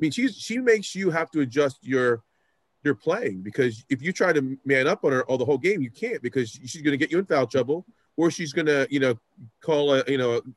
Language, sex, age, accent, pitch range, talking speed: English, male, 30-49, American, 125-175 Hz, 265 wpm